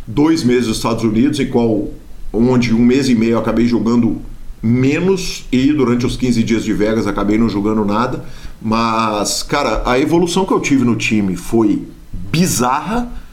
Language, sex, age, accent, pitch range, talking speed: Portuguese, male, 50-69, Brazilian, 115-155 Hz, 170 wpm